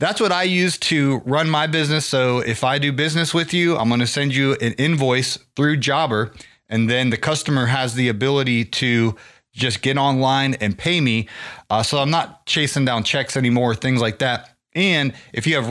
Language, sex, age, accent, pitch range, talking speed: English, male, 30-49, American, 110-150 Hz, 200 wpm